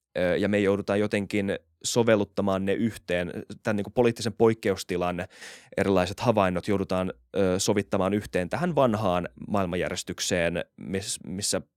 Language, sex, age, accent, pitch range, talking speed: Finnish, male, 20-39, native, 95-120 Hz, 95 wpm